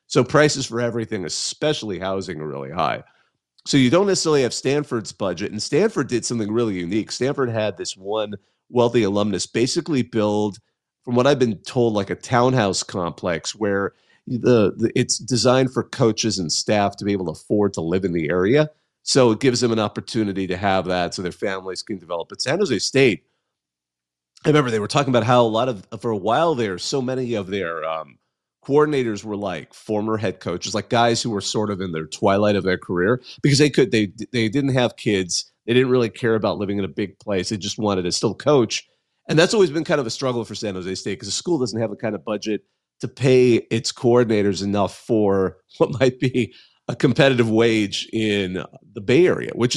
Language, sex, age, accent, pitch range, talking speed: English, male, 40-59, American, 100-125 Hz, 210 wpm